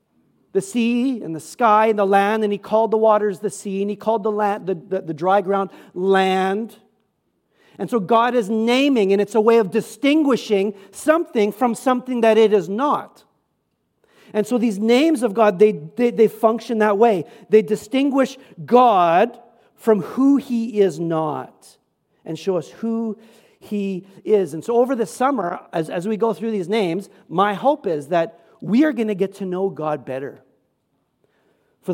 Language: English